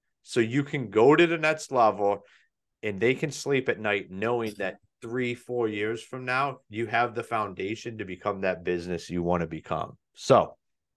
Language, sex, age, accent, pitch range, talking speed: English, male, 30-49, American, 120-170 Hz, 185 wpm